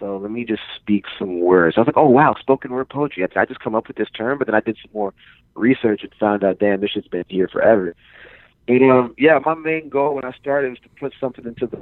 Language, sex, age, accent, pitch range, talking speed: English, male, 30-49, American, 100-130 Hz, 275 wpm